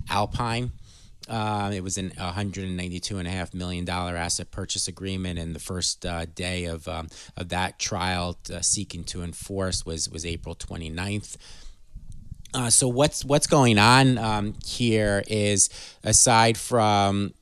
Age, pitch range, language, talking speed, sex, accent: 30-49, 85-100 Hz, English, 165 wpm, male, American